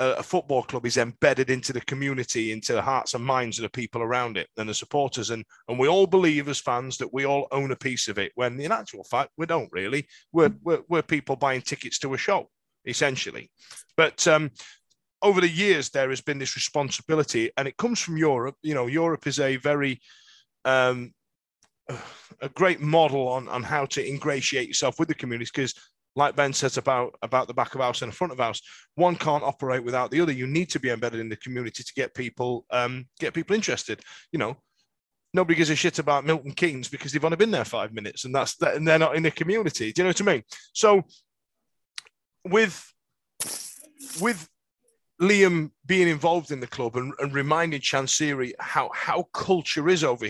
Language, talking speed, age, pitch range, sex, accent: English, 205 wpm, 30-49, 125-165 Hz, male, British